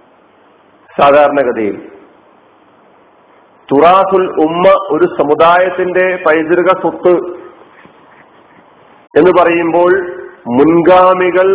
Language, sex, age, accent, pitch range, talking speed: Malayalam, male, 50-69, native, 145-175 Hz, 50 wpm